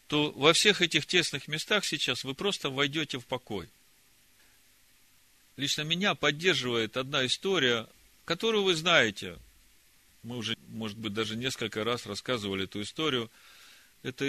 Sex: male